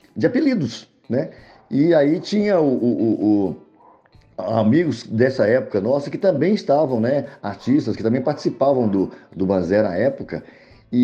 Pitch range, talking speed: 120-175 Hz, 150 wpm